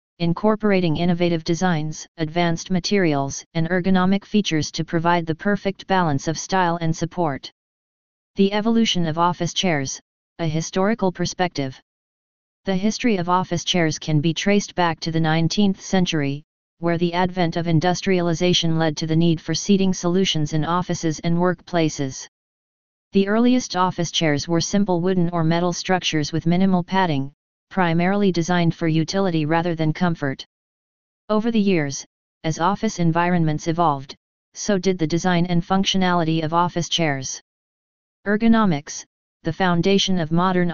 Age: 40-59